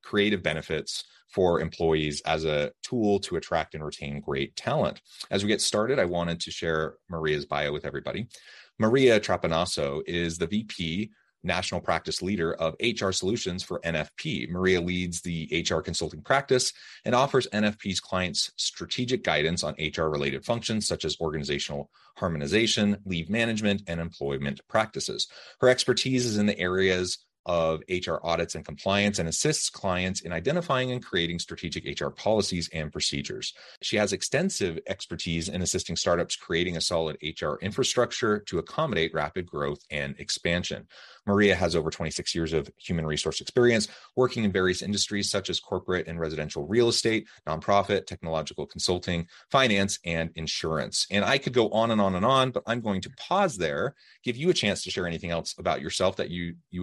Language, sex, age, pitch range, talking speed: English, male, 30-49, 80-105 Hz, 165 wpm